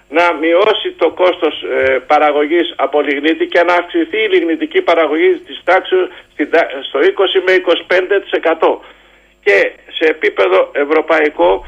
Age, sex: 50-69, male